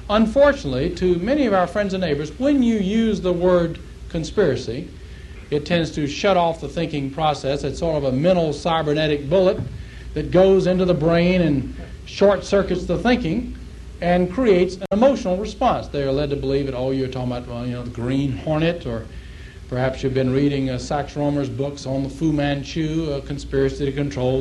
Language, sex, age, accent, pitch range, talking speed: English, male, 60-79, American, 130-190 Hz, 185 wpm